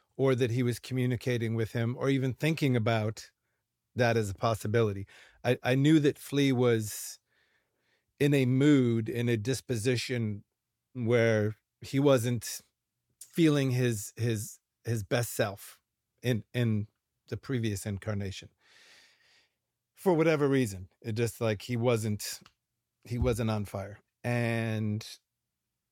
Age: 40-59